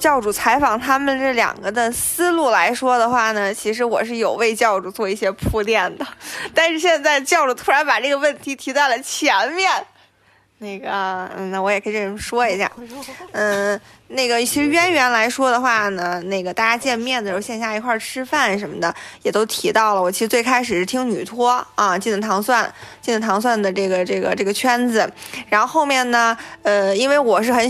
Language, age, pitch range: Chinese, 20-39, 205-255 Hz